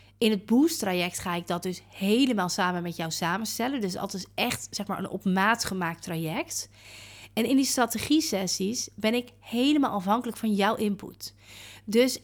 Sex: female